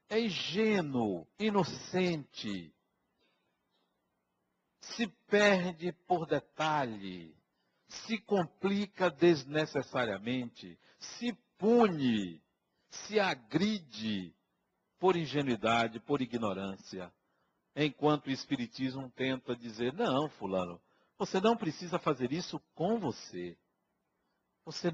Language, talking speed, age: Portuguese, 80 wpm, 60-79